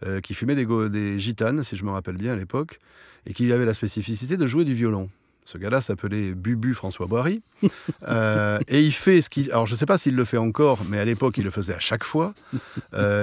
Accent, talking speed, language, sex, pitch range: French, 245 wpm, French, male, 105-140 Hz